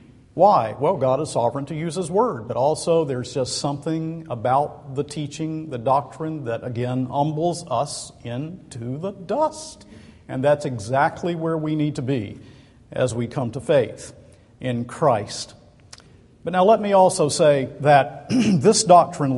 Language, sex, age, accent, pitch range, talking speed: English, male, 50-69, American, 130-170 Hz, 155 wpm